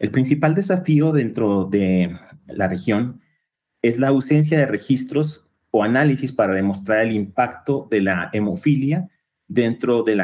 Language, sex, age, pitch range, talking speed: Spanish, male, 30-49, 110-145 Hz, 140 wpm